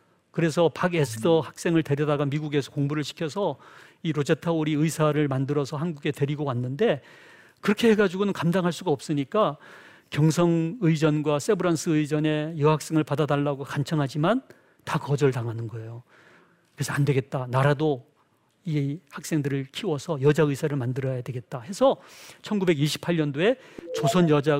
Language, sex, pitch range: Korean, male, 135-165 Hz